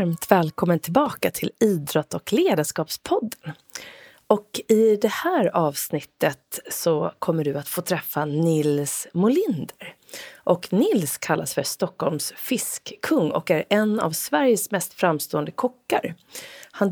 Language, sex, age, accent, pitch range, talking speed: Swedish, female, 30-49, native, 160-225 Hz, 120 wpm